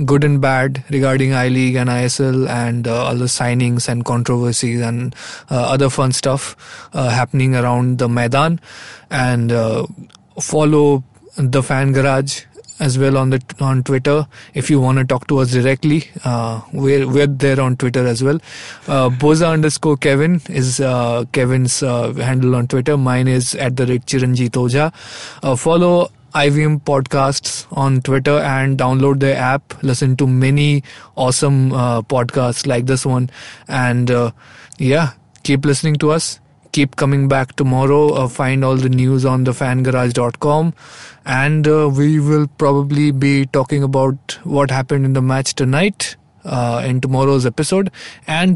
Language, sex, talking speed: English, male, 155 wpm